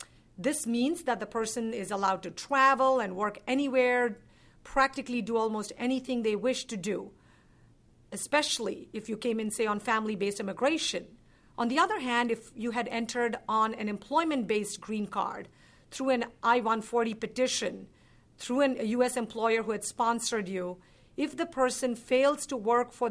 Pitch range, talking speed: 215-255 Hz, 160 wpm